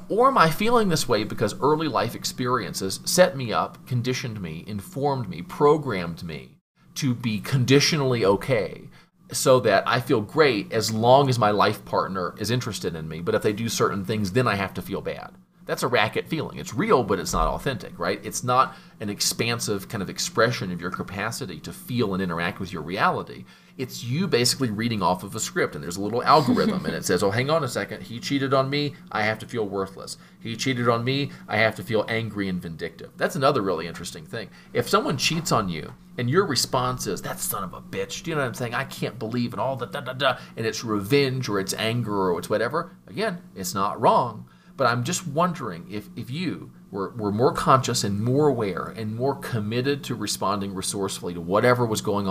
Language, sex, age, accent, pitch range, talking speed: English, male, 40-59, American, 100-135 Hz, 220 wpm